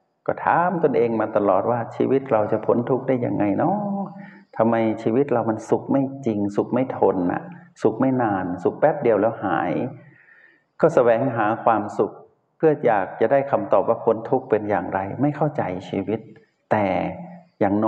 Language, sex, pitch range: Thai, male, 100-125 Hz